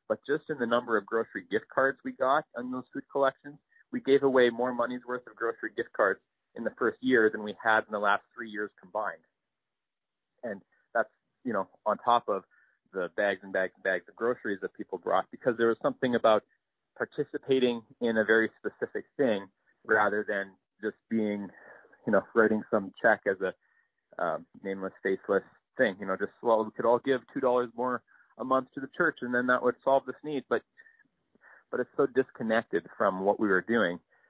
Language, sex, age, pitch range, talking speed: English, male, 30-49, 110-130 Hz, 200 wpm